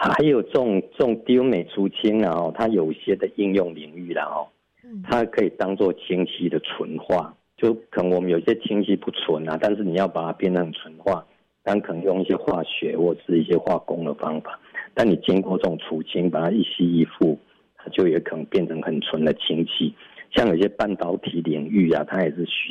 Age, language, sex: 50-69, Chinese, male